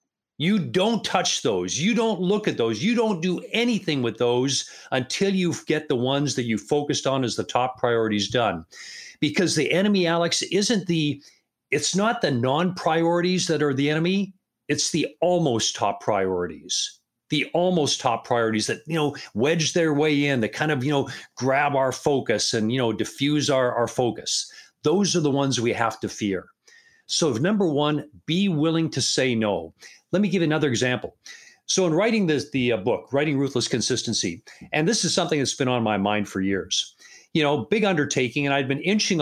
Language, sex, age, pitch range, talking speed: English, male, 50-69, 120-170 Hz, 190 wpm